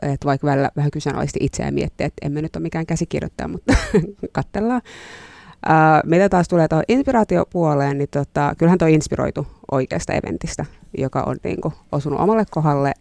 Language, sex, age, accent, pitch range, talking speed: Finnish, female, 30-49, native, 135-160 Hz, 155 wpm